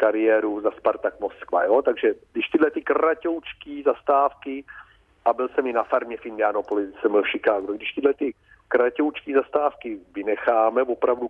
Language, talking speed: Czech, 150 wpm